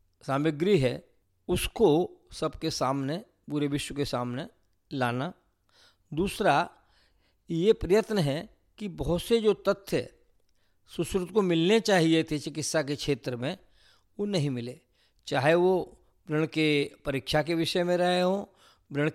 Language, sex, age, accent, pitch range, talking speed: Hindi, male, 50-69, native, 145-190 Hz, 130 wpm